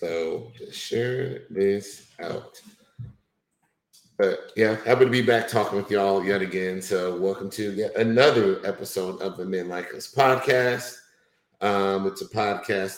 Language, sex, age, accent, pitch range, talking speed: English, male, 50-69, American, 95-125 Hz, 140 wpm